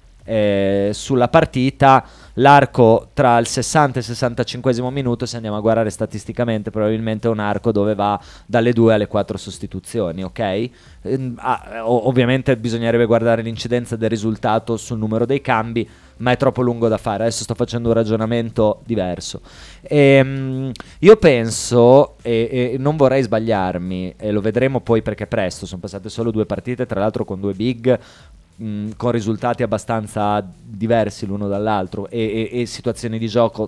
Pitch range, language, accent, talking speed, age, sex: 105-130 Hz, Italian, native, 160 wpm, 20-39, male